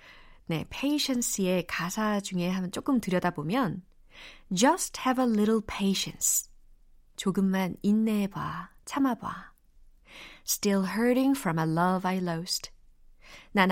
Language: Korean